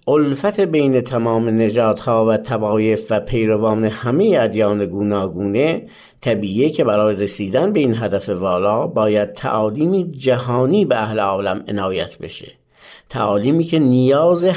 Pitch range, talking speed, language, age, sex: 110-145 Hz, 130 wpm, Persian, 50-69, male